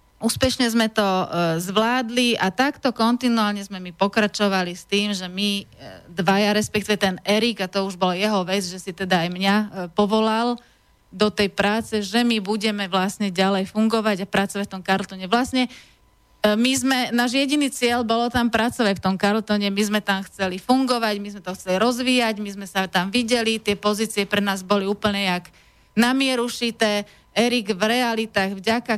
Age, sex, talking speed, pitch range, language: 30-49, female, 170 wpm, 195-225 Hz, Slovak